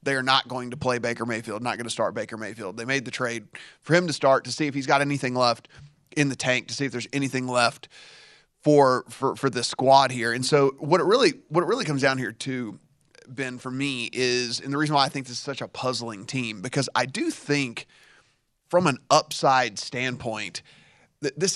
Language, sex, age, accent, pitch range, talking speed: English, male, 30-49, American, 125-150 Hz, 225 wpm